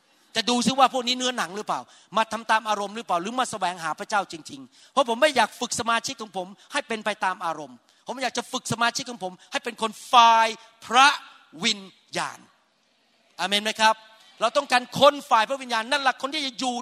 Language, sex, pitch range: Thai, male, 200-265 Hz